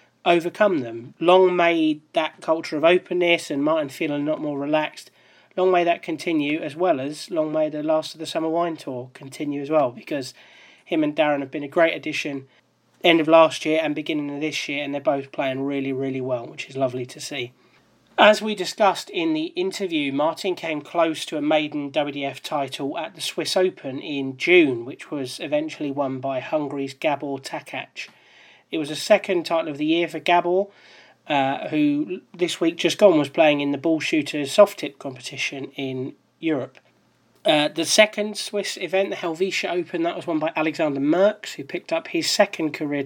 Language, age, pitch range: English, 30-49, 140-180 Hz